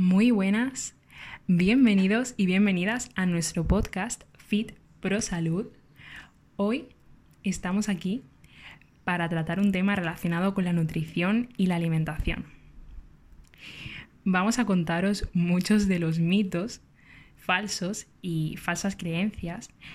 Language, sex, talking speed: Spanish, female, 110 wpm